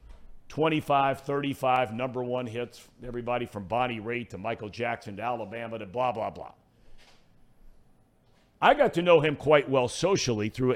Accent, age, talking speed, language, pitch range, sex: American, 50-69, 150 wpm, English, 110-140 Hz, male